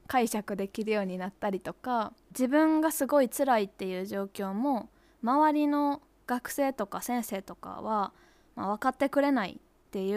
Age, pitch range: 20-39, 205-285 Hz